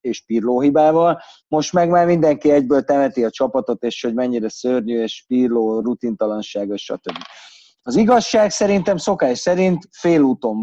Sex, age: male, 30-49